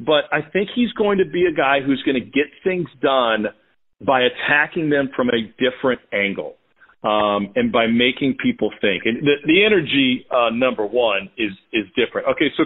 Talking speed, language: 190 wpm, English